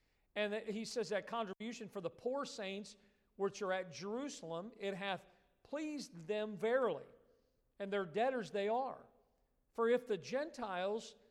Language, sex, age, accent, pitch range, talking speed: English, male, 50-69, American, 185-235 Hz, 145 wpm